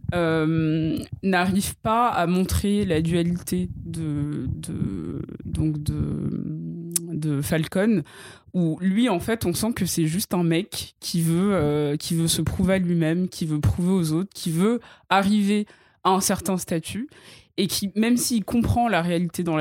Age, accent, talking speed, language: 20-39, French, 160 wpm, French